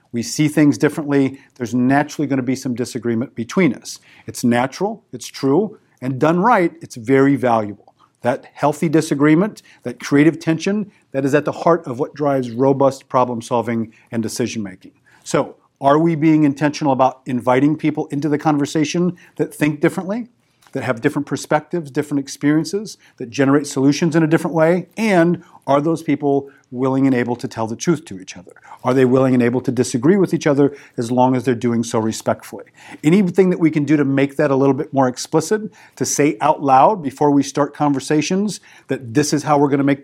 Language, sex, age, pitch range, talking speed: English, male, 40-59, 130-155 Hz, 190 wpm